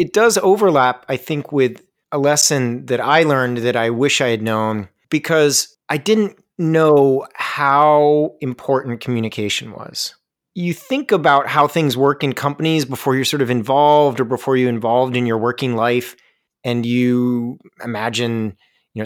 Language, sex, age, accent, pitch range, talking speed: English, male, 30-49, American, 125-155 Hz, 155 wpm